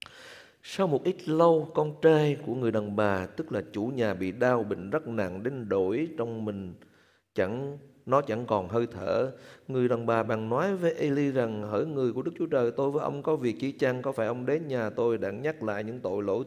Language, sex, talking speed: Vietnamese, male, 225 wpm